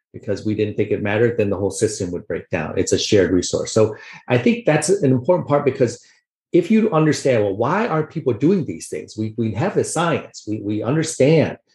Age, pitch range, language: 40-59, 105-130 Hz, English